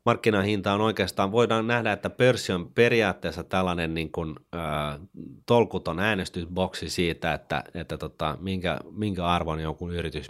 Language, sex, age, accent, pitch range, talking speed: Finnish, male, 30-49, native, 80-100 Hz, 140 wpm